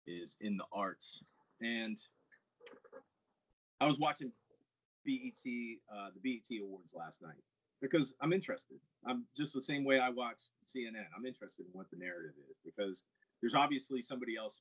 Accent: American